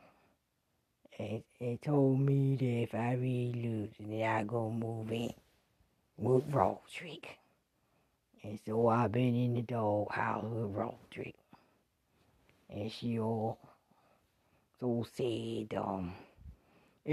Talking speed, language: 120 wpm, English